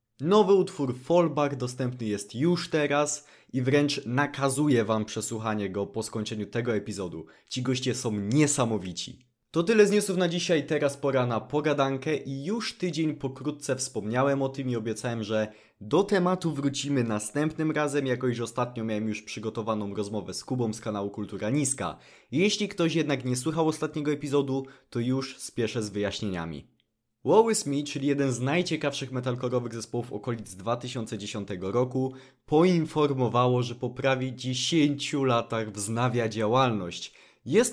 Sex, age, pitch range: male, 20-39, 110-150 Hz